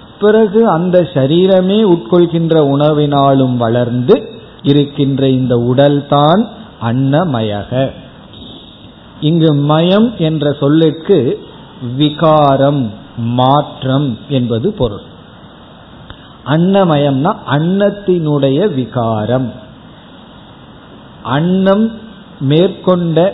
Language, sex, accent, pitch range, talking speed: Tamil, male, native, 130-175 Hz, 55 wpm